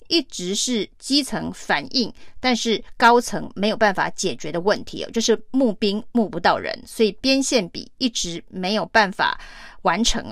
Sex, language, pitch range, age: female, Chinese, 205-260 Hz, 30-49